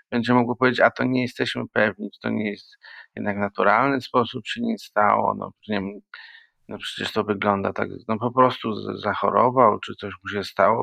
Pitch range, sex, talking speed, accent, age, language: 105-120 Hz, male, 175 wpm, native, 40-59, Polish